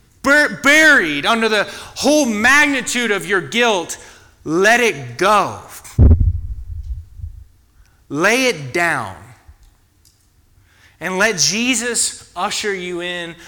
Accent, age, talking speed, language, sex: American, 30-49, 90 wpm, English, male